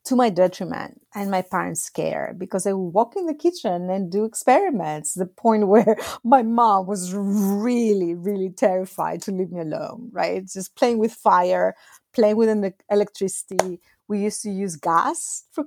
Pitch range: 185-235 Hz